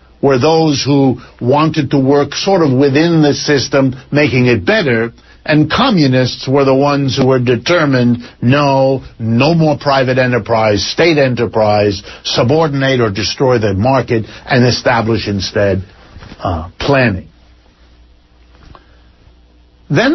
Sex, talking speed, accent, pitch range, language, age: male, 120 wpm, American, 120-165 Hz, English, 60-79